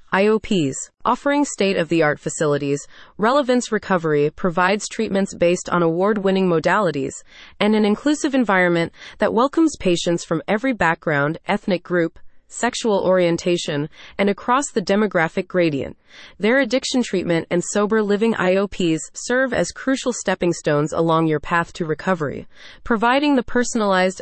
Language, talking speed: English, 125 wpm